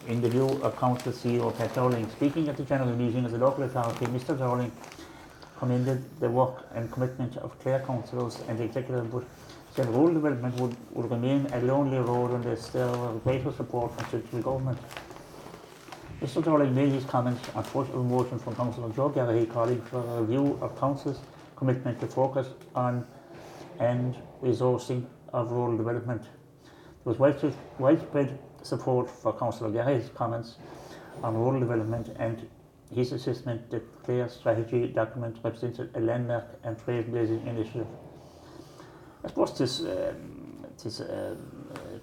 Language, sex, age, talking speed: English, male, 60-79, 155 wpm